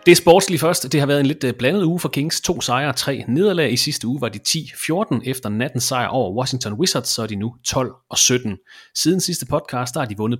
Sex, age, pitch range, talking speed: male, 30-49, 120-150 Hz, 230 wpm